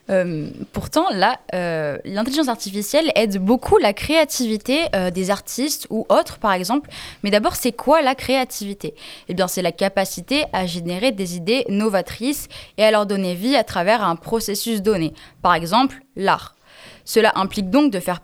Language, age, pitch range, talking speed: French, 10-29, 200-275 Hz, 170 wpm